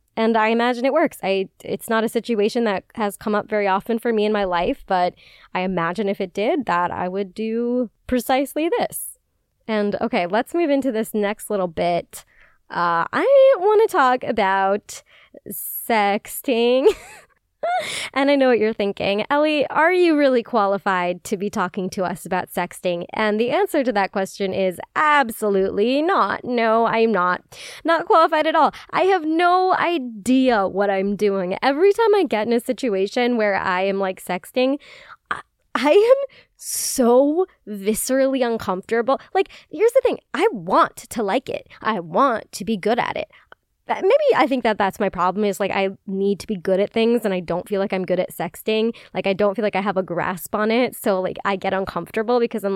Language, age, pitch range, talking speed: English, 20-39, 195-285 Hz, 190 wpm